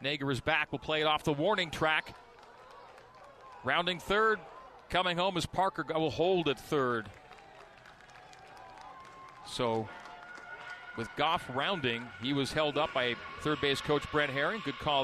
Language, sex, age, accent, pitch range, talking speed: English, male, 40-59, American, 125-170 Hz, 145 wpm